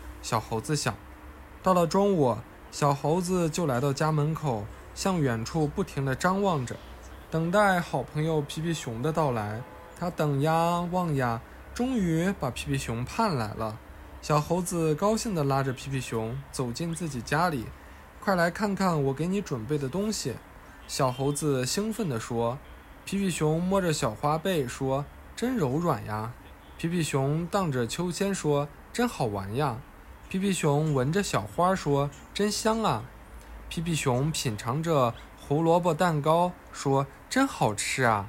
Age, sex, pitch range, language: 20-39, male, 115-170 Hz, Chinese